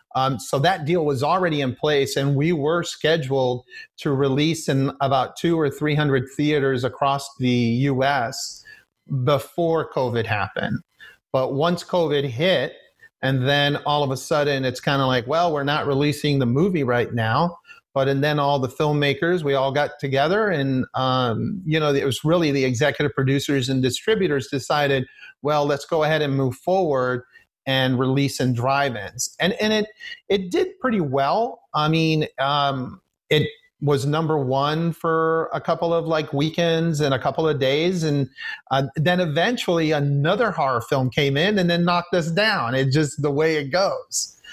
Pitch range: 135-170 Hz